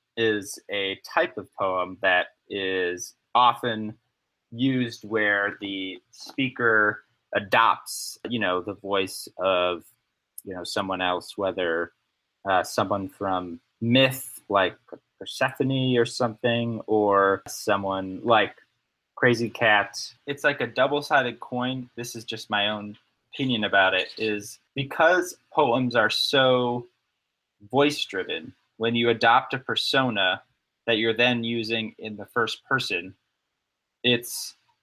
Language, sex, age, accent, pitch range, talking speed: English, male, 20-39, American, 105-125 Hz, 120 wpm